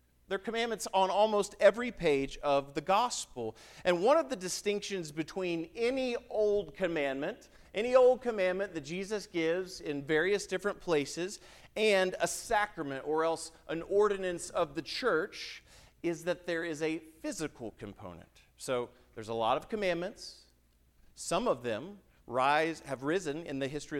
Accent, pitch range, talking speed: American, 125-180 Hz, 155 wpm